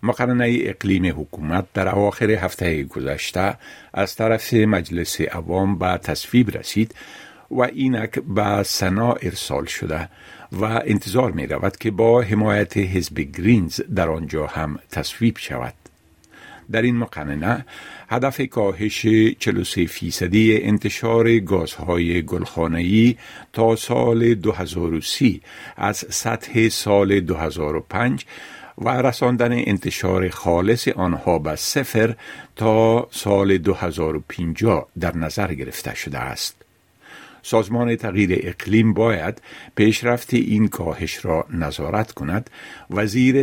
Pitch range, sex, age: 90-115 Hz, male, 50-69